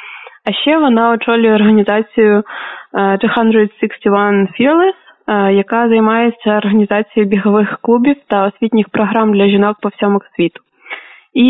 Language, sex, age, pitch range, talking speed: Ukrainian, female, 20-39, 200-235 Hz, 120 wpm